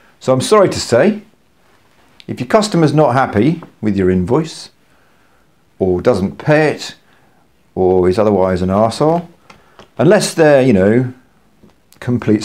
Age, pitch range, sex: 50-69, 95-130 Hz, male